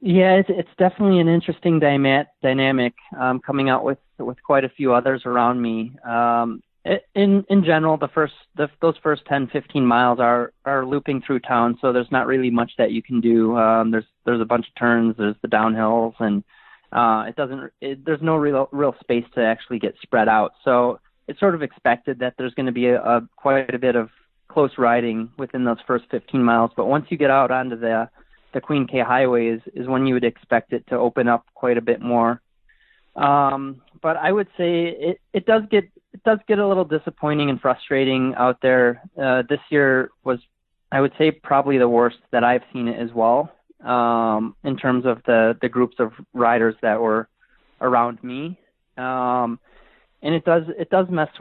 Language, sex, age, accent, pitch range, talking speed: English, male, 20-39, American, 120-145 Hz, 200 wpm